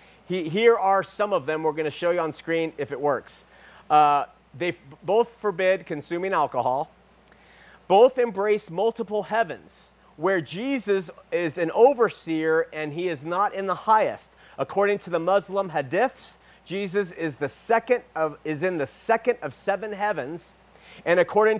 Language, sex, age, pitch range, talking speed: English, male, 40-59, 160-205 Hz, 145 wpm